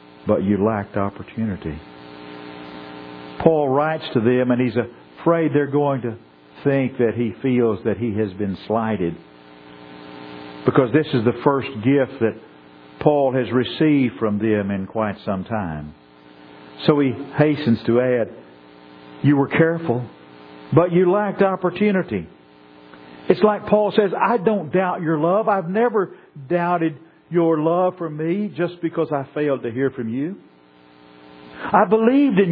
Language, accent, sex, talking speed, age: English, American, male, 145 wpm, 50-69